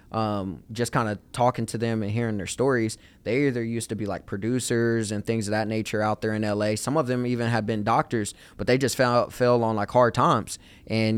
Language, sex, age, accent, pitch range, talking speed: English, male, 20-39, American, 105-125 Hz, 235 wpm